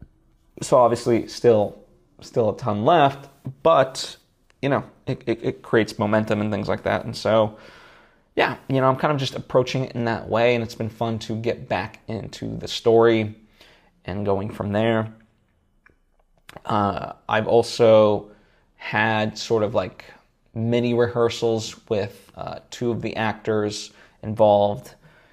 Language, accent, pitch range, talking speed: English, American, 105-115 Hz, 150 wpm